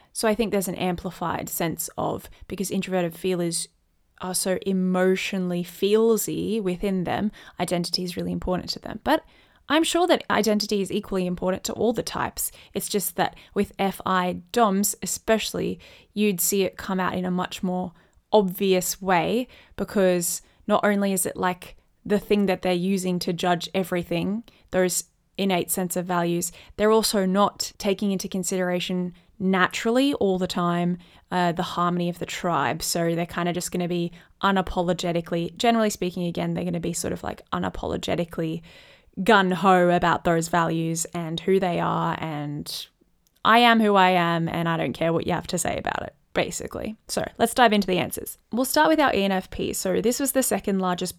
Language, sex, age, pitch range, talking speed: English, female, 20-39, 175-205 Hz, 180 wpm